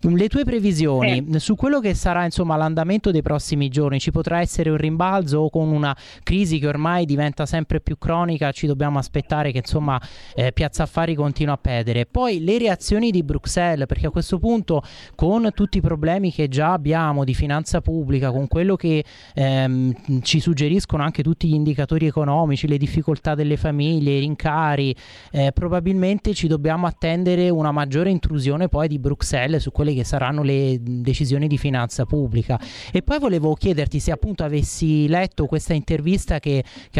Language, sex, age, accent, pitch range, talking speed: Italian, male, 30-49, native, 140-170 Hz, 175 wpm